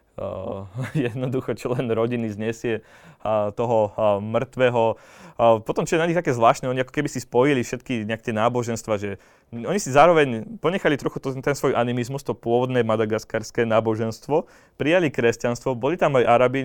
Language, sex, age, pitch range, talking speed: Slovak, male, 20-39, 110-135 Hz, 160 wpm